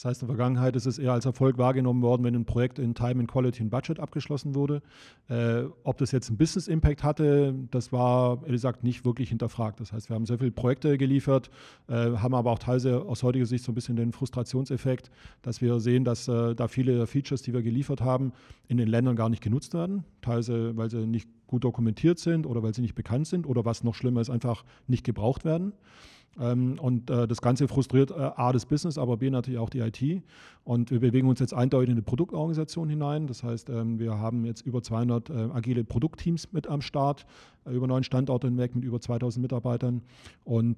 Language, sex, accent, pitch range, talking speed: German, male, German, 120-135 Hz, 220 wpm